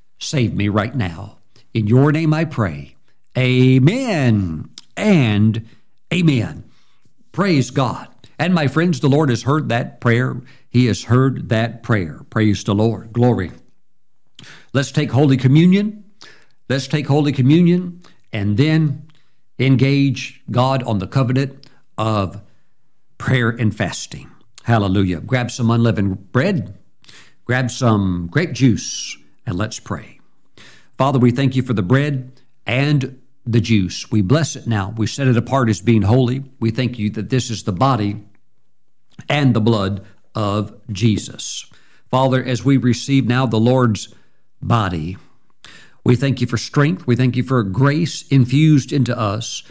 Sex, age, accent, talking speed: male, 50-69, American, 140 wpm